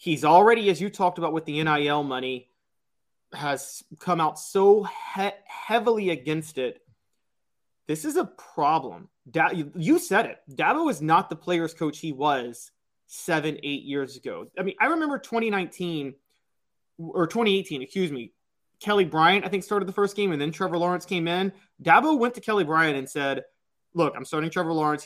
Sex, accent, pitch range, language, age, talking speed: male, American, 145-195 Hz, English, 30-49, 180 wpm